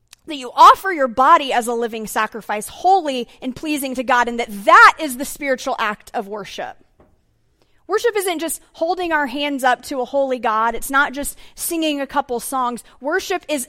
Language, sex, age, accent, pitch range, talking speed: English, female, 30-49, American, 215-310 Hz, 190 wpm